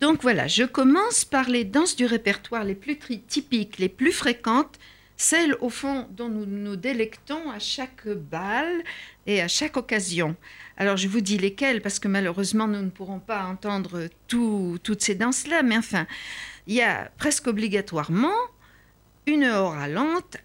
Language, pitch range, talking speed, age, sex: French, 195-280 Hz, 165 wpm, 60-79, female